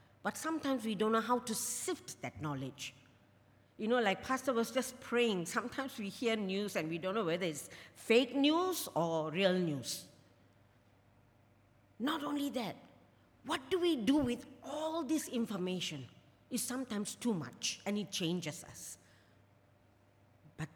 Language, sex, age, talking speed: English, female, 50-69, 150 wpm